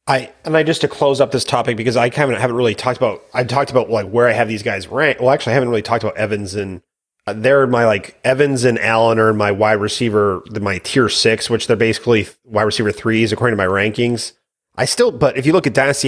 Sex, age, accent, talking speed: male, 30-49, American, 260 wpm